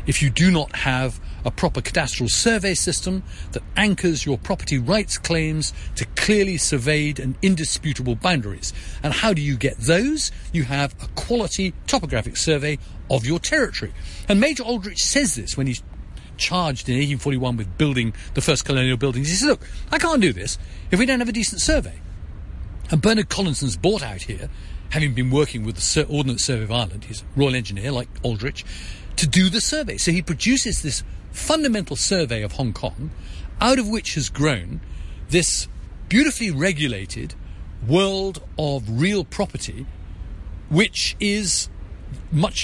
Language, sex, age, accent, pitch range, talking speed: English, male, 50-69, British, 105-180 Hz, 160 wpm